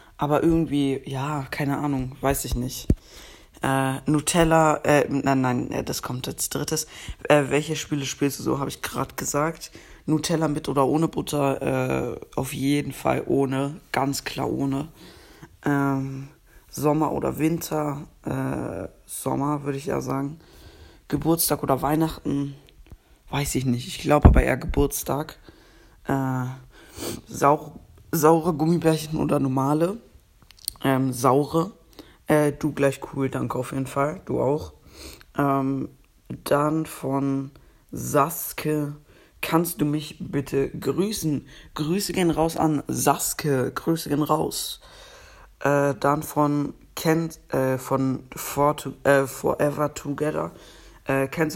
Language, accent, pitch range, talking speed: German, German, 135-155 Hz, 125 wpm